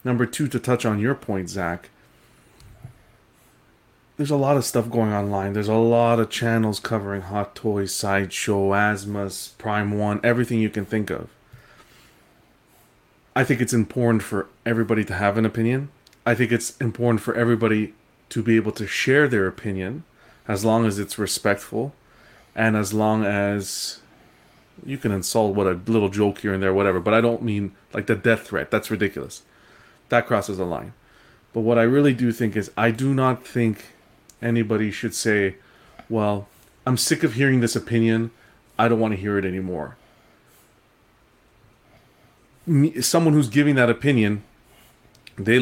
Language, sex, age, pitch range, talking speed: English, male, 30-49, 105-120 Hz, 160 wpm